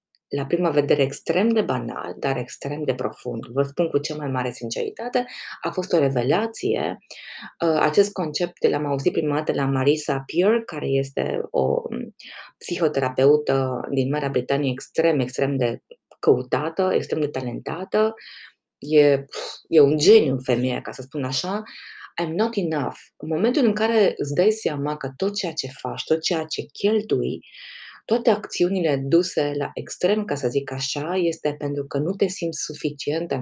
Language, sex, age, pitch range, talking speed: Romanian, female, 20-39, 140-205 Hz, 160 wpm